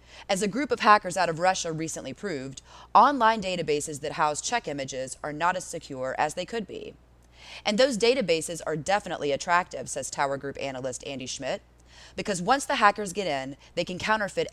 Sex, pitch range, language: female, 140-220 Hz, English